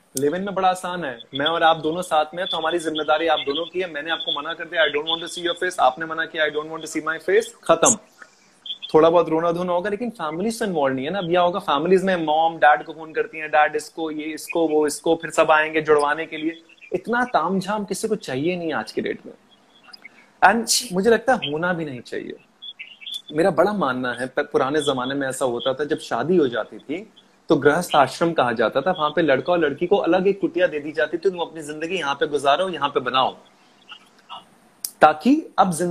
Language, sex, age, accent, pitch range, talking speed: Hindi, male, 30-49, native, 155-195 Hz, 130 wpm